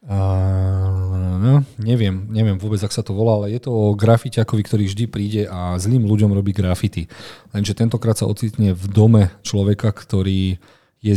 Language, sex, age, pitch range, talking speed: Slovak, male, 40-59, 95-115 Hz, 160 wpm